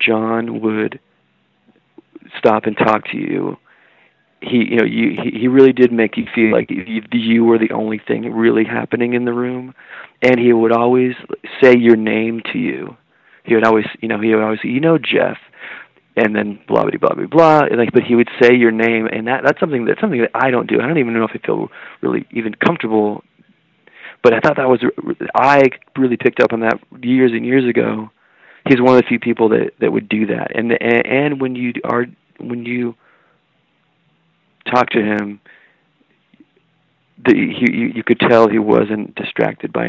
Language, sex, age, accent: English, male, 40-59, American